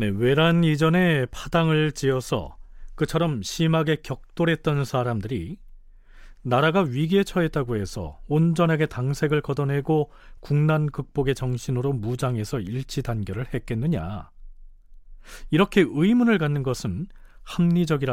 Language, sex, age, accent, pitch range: Korean, male, 40-59, native, 115-165 Hz